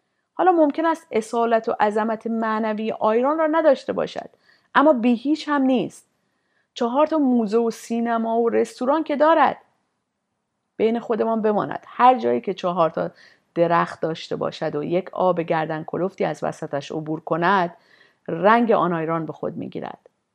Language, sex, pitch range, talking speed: Persian, female, 190-265 Hz, 145 wpm